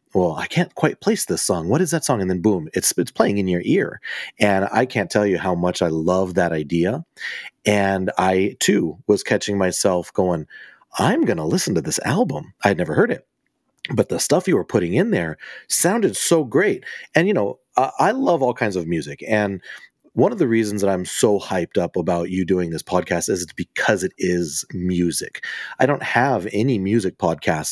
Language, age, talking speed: English, 30-49, 210 wpm